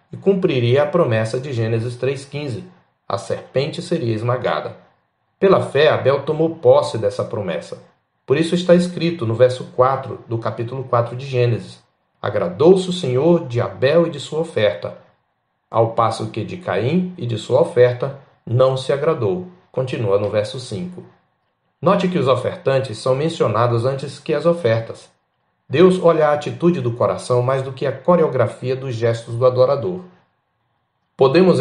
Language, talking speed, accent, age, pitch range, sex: Portuguese, 155 wpm, Brazilian, 40-59, 120-145 Hz, male